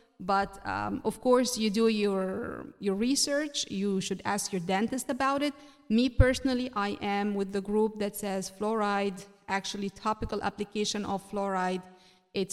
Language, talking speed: English, 155 wpm